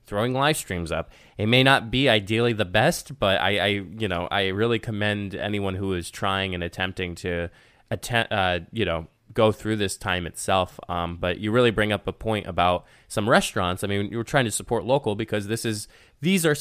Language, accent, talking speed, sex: English, American, 210 wpm, male